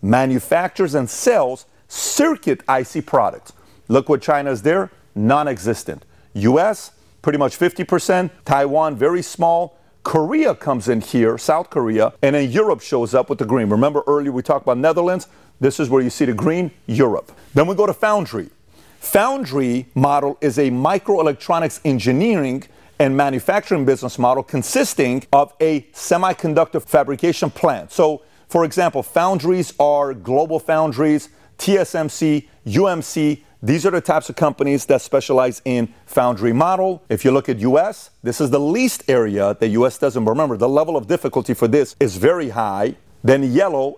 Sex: male